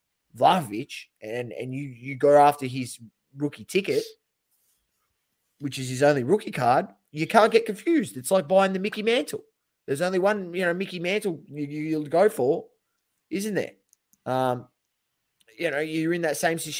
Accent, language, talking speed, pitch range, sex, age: Australian, English, 165 wpm, 135-180 Hz, male, 20-39